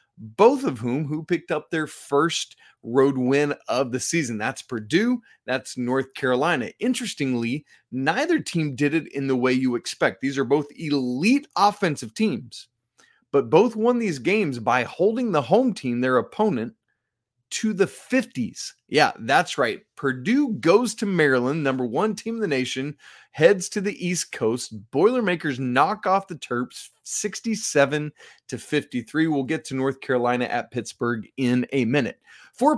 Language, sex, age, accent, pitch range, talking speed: English, male, 30-49, American, 125-200 Hz, 155 wpm